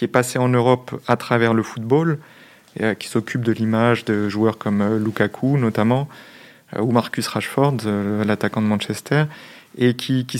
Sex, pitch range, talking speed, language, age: male, 110-135 Hz, 165 wpm, French, 30-49